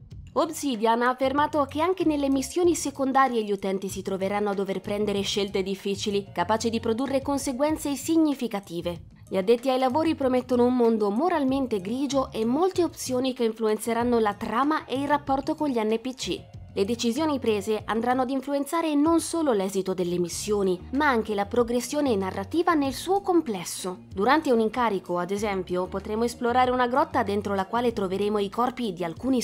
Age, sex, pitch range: 20-39, female, 200-270 Hz